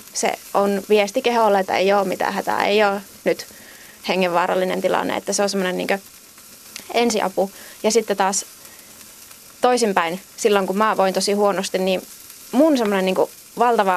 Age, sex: 20-39, female